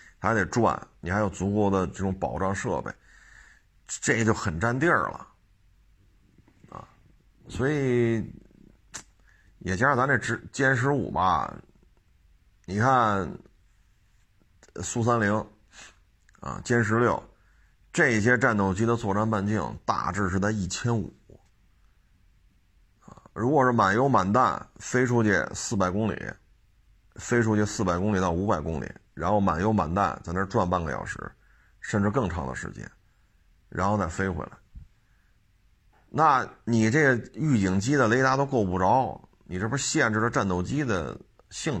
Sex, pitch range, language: male, 95-115 Hz, Chinese